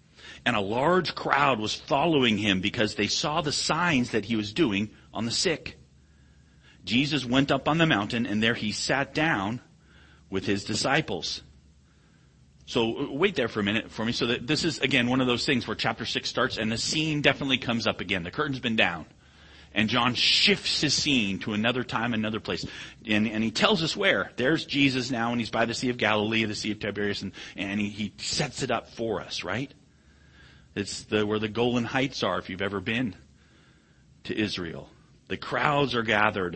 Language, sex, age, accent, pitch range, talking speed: English, male, 40-59, American, 95-125 Hz, 200 wpm